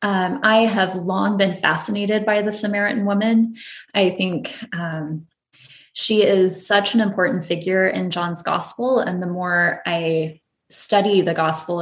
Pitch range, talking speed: 170-220 Hz, 145 wpm